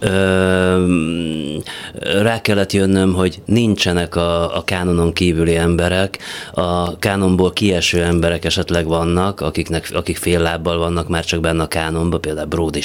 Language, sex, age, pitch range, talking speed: Hungarian, male, 30-49, 85-100 Hz, 130 wpm